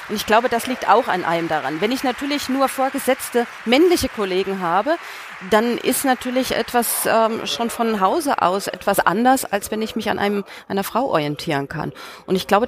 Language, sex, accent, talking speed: German, female, German, 195 wpm